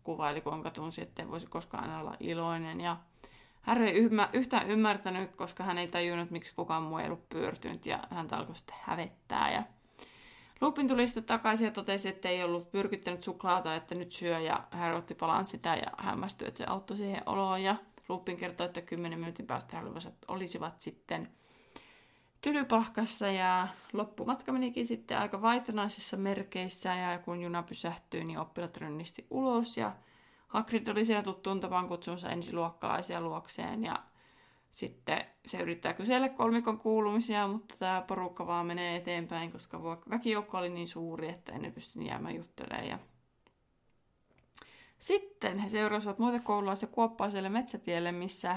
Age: 20-39